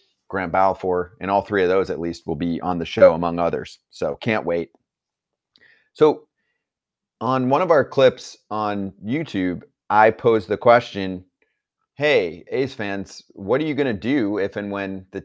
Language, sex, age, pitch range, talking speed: English, male, 30-49, 90-110 Hz, 175 wpm